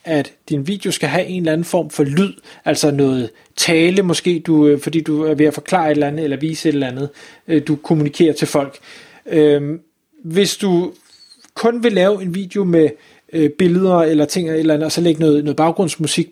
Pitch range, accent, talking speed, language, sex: 150-185 Hz, native, 190 wpm, Danish, male